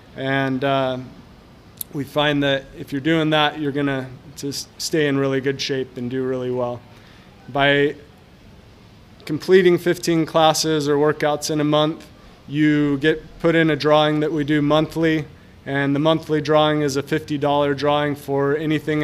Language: English